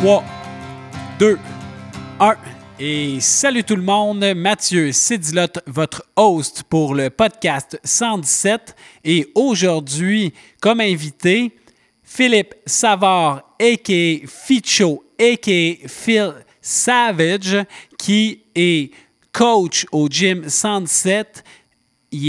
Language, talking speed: French, 90 wpm